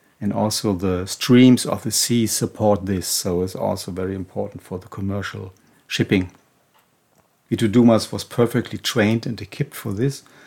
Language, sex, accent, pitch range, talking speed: German, male, German, 100-120 Hz, 155 wpm